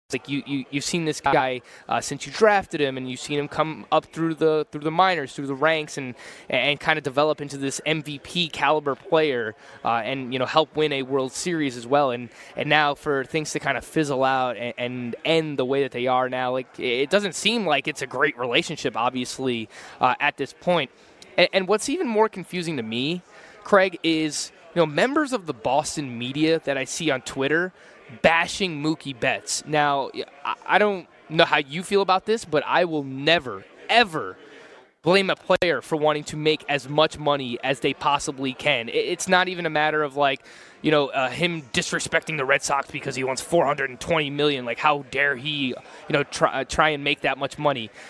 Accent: American